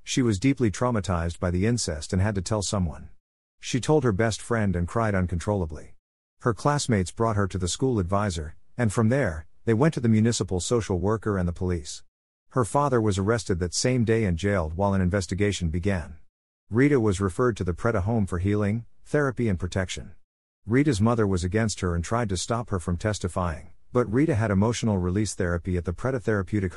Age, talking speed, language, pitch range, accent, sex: 50-69, 195 wpm, English, 90-115 Hz, American, male